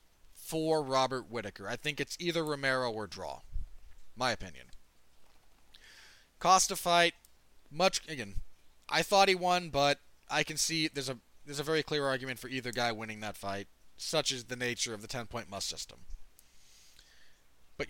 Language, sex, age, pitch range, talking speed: English, male, 30-49, 115-155 Hz, 160 wpm